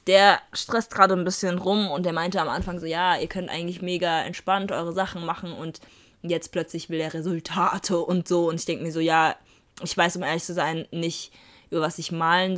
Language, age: German, 20-39